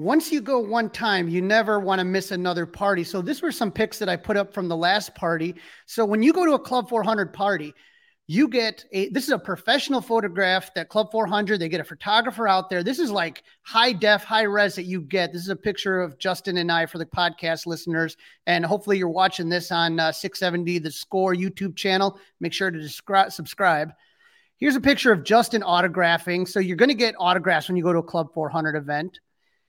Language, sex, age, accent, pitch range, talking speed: English, male, 30-49, American, 175-215 Hz, 220 wpm